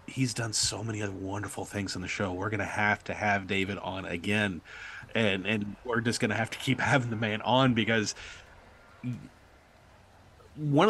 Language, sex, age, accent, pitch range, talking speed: English, male, 30-49, American, 100-130 Hz, 185 wpm